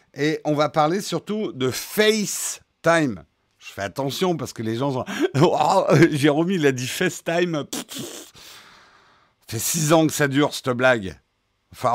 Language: French